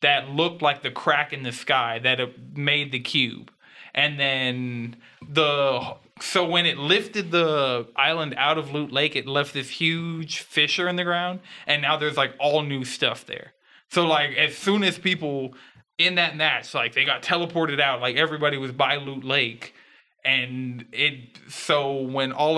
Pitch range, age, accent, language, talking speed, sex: 130-155 Hz, 20-39, American, English, 175 wpm, male